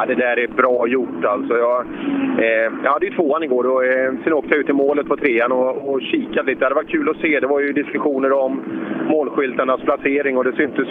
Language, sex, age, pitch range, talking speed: Swedish, male, 30-49, 125-155 Hz, 230 wpm